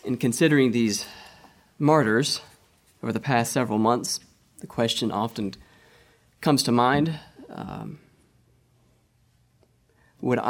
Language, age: English, 30-49